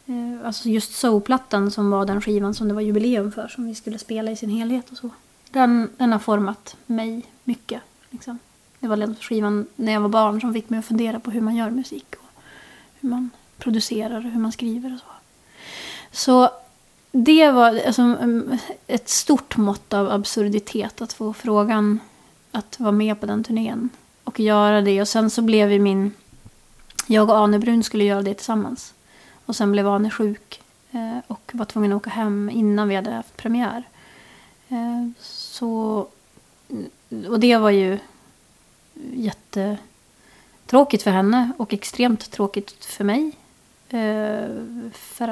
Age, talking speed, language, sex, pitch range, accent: 30-49, 155 wpm, Swedish, female, 210-240 Hz, native